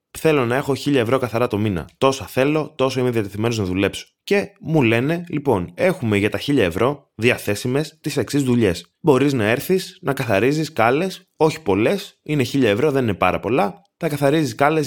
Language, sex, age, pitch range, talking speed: Greek, male, 20-39, 100-135 Hz, 185 wpm